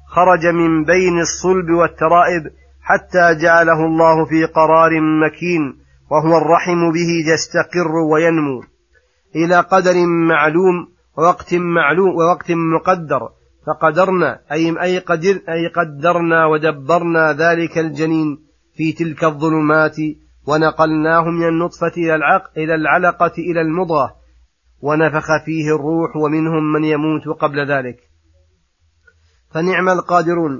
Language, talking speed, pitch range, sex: Arabic, 100 wpm, 150-170 Hz, male